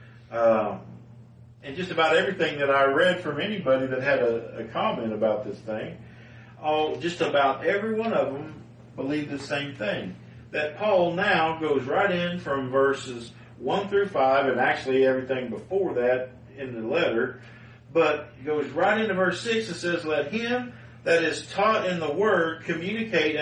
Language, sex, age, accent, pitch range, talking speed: English, male, 50-69, American, 120-165 Hz, 165 wpm